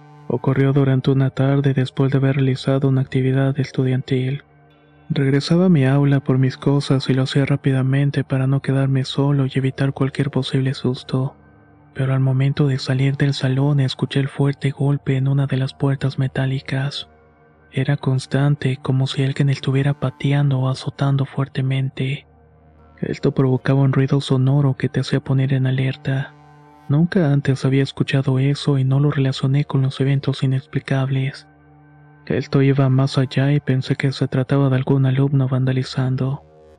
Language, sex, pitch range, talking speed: Spanish, male, 130-140 Hz, 155 wpm